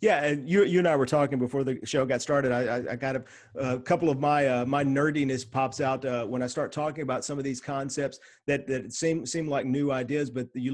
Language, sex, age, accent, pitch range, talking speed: English, male, 40-59, American, 130-160 Hz, 255 wpm